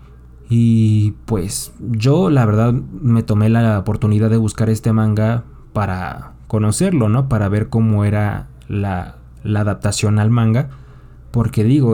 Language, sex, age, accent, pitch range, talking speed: Spanish, male, 20-39, Mexican, 100-130 Hz, 135 wpm